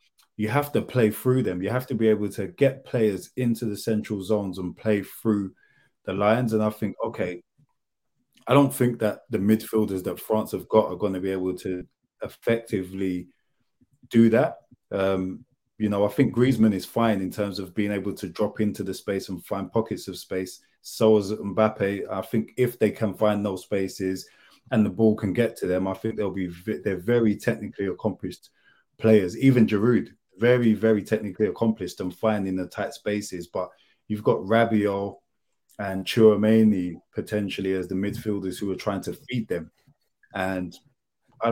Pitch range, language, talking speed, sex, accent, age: 95-110 Hz, English, 185 wpm, male, British, 20-39